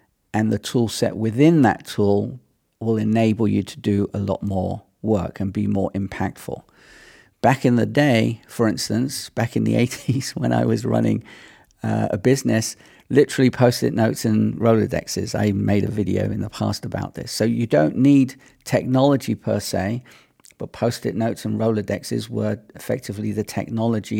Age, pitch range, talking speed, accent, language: 50-69, 105-130 Hz, 165 wpm, British, English